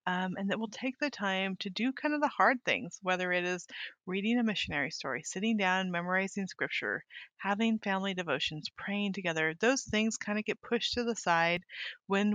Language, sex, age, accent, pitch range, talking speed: English, female, 30-49, American, 180-215 Hz, 195 wpm